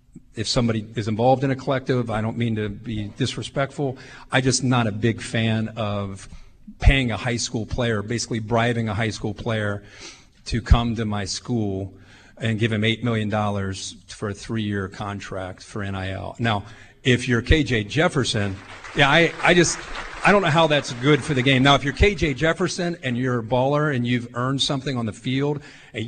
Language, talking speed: English, 190 wpm